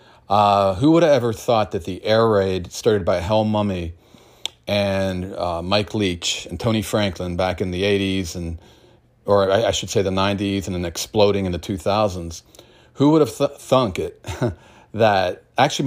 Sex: male